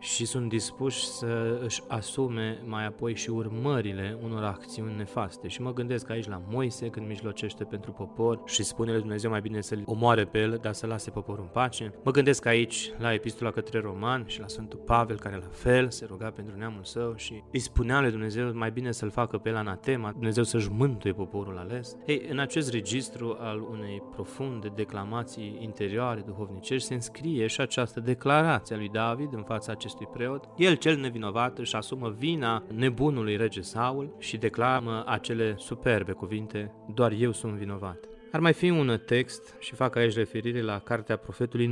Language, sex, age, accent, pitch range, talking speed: Romanian, male, 20-39, native, 110-125 Hz, 180 wpm